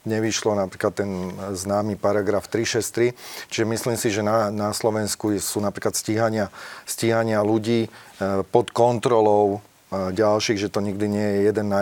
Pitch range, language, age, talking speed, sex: 105-125 Hz, Slovak, 40-59, 140 wpm, male